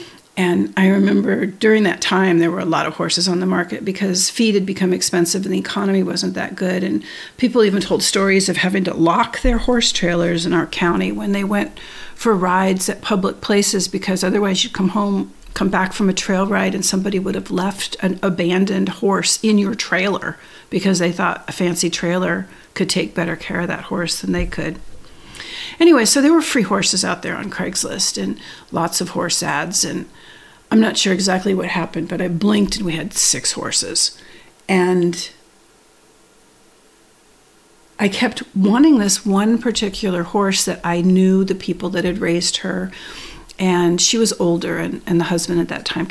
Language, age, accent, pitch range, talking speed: English, 50-69, American, 175-210 Hz, 190 wpm